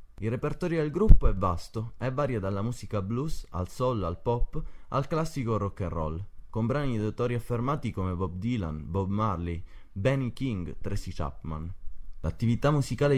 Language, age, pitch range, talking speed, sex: Italian, 20-39, 95-130 Hz, 165 wpm, male